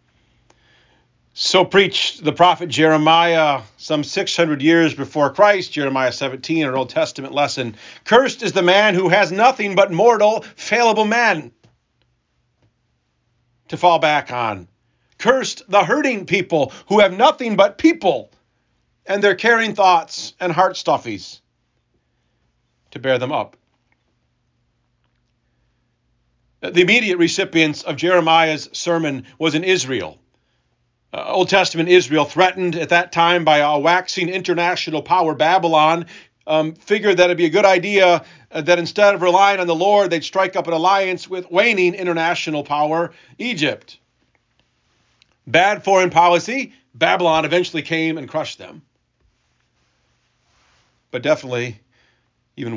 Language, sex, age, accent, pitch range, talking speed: English, male, 40-59, American, 125-185 Hz, 130 wpm